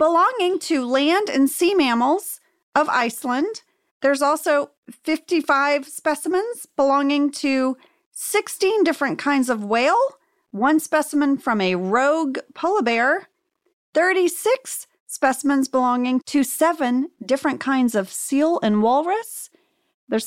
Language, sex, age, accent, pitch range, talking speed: English, female, 40-59, American, 230-330 Hz, 115 wpm